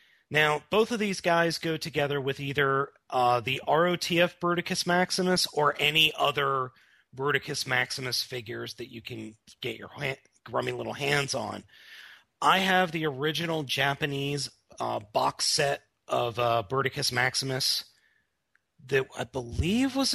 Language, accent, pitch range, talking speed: English, American, 135-180 Hz, 135 wpm